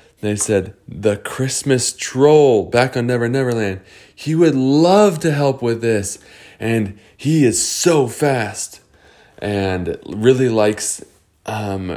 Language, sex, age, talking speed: English, male, 20-39, 125 wpm